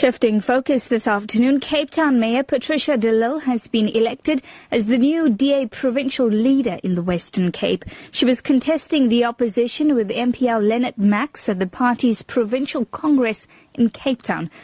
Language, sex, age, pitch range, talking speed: English, female, 30-49, 215-275 Hz, 160 wpm